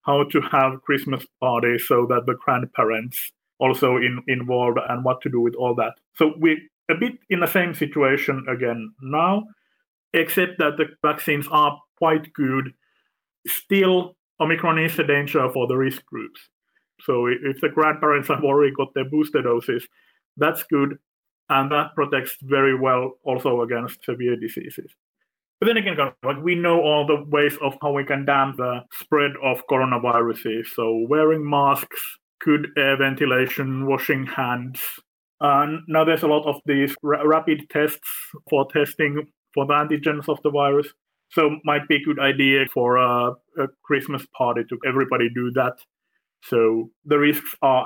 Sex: male